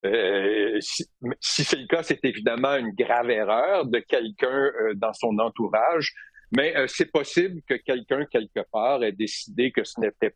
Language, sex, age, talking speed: French, male, 60-79, 175 wpm